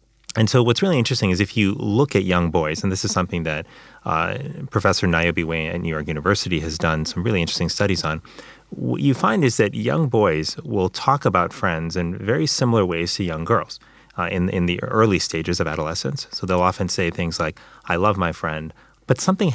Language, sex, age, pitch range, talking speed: English, male, 30-49, 85-110 Hz, 215 wpm